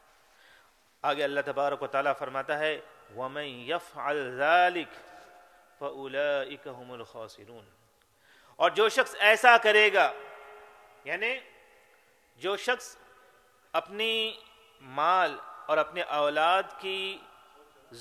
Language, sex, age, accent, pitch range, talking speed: English, male, 40-59, Indian, 160-215 Hz, 80 wpm